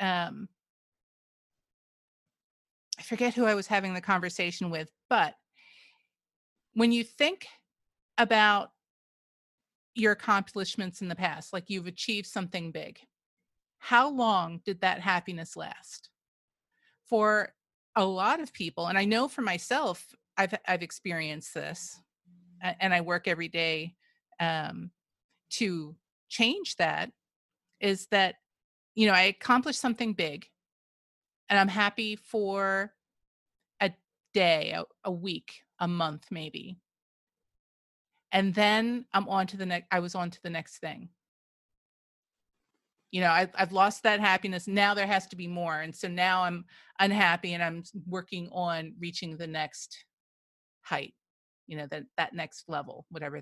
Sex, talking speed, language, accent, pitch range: female, 135 wpm, English, American, 175-210 Hz